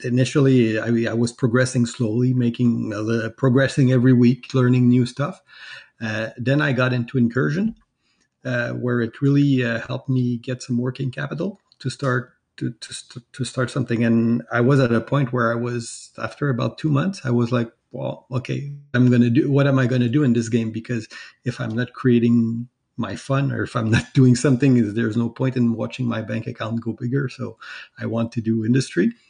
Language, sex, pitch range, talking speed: English, male, 115-130 Hz, 200 wpm